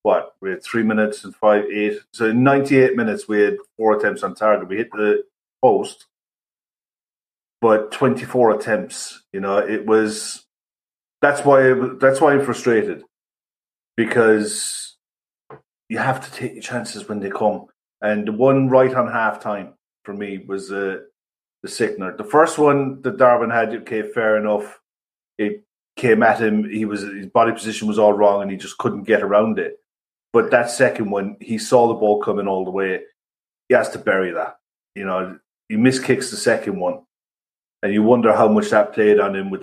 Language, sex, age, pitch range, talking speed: English, male, 30-49, 105-130 Hz, 180 wpm